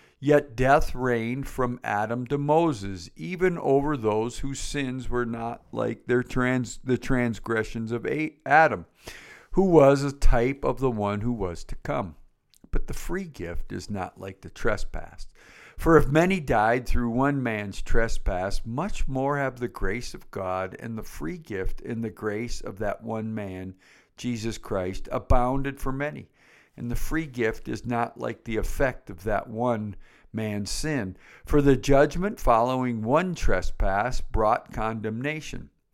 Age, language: 50-69, English